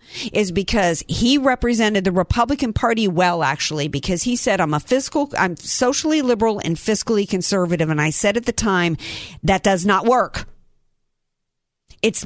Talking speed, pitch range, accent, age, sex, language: 155 wpm, 195-295 Hz, American, 50-69, female, English